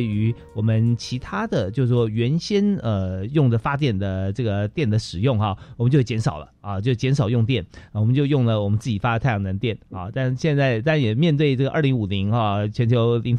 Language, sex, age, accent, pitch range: Chinese, male, 30-49, native, 110-145 Hz